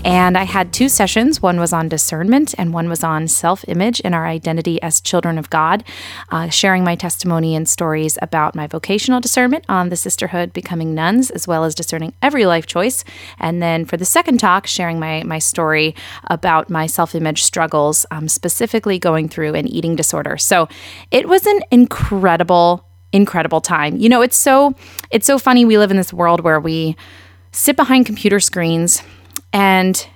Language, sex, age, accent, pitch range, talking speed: English, female, 20-39, American, 165-220 Hz, 180 wpm